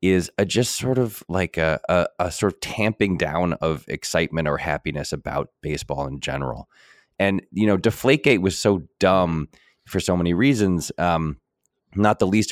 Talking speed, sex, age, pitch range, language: 175 wpm, male, 20-39, 80-105 Hz, English